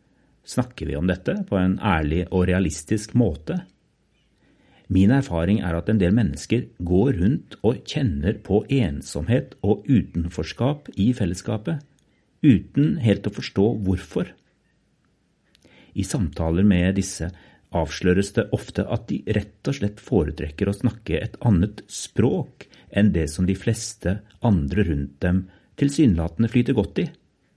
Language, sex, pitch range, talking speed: English, male, 90-115 Hz, 135 wpm